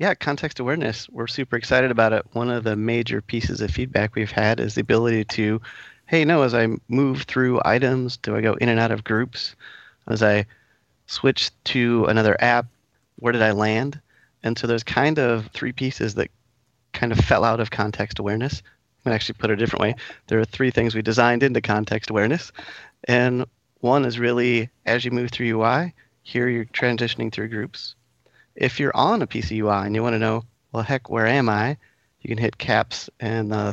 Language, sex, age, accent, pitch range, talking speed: English, male, 30-49, American, 105-120 Hz, 210 wpm